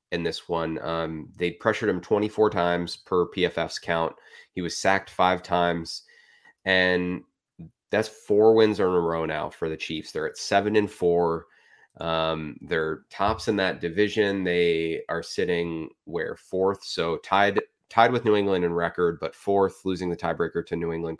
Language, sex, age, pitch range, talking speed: English, male, 30-49, 85-95 Hz, 170 wpm